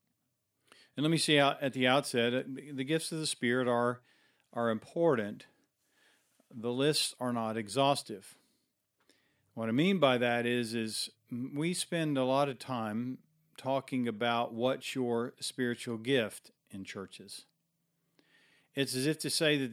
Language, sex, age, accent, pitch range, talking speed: English, male, 50-69, American, 120-145 Hz, 145 wpm